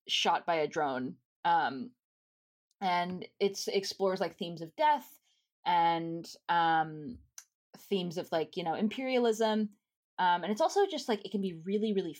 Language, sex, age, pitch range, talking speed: English, female, 20-39, 170-215 Hz, 155 wpm